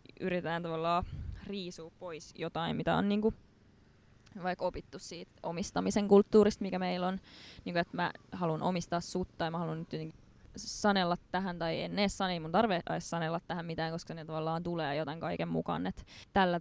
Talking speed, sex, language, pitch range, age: 180 wpm, female, Finnish, 160-185 Hz, 20-39